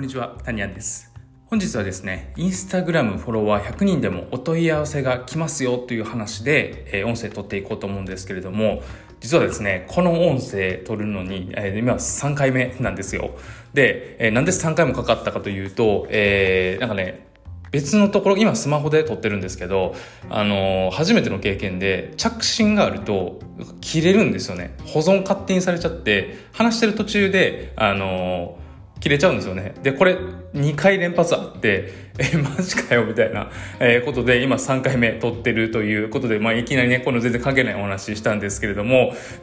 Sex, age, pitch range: male, 20-39, 100-155 Hz